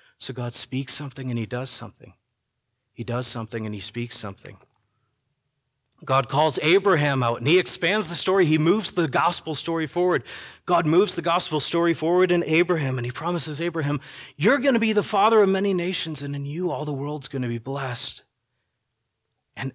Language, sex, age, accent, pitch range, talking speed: English, male, 30-49, American, 125-165 Hz, 190 wpm